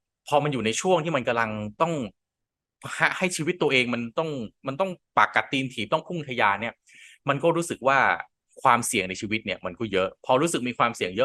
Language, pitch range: Thai, 115-165 Hz